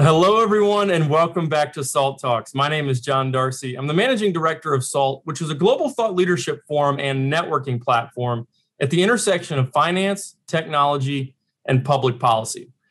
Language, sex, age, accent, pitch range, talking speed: English, male, 30-49, American, 130-170 Hz, 175 wpm